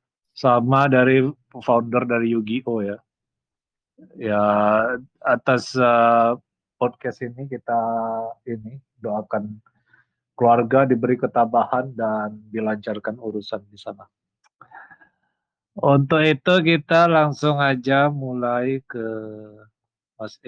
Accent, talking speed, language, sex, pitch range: native, 90 wpm, Indonesian, male, 115-150 Hz